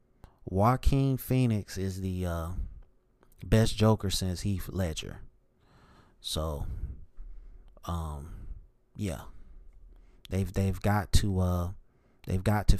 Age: 30-49